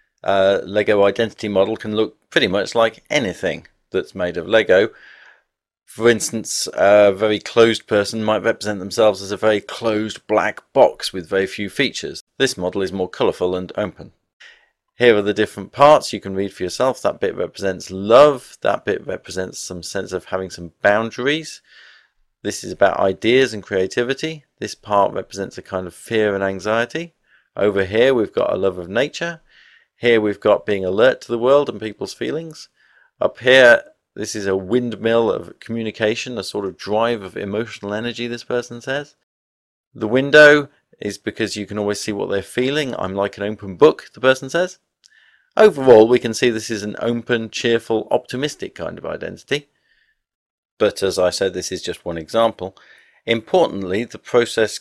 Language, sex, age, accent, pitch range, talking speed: French, male, 40-59, British, 100-120 Hz, 175 wpm